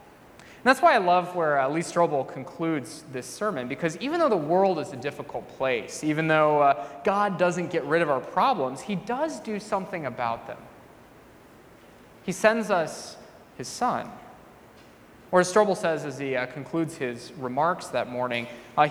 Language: English